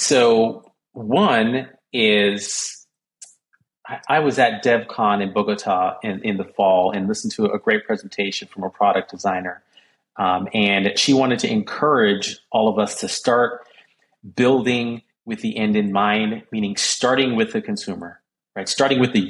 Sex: male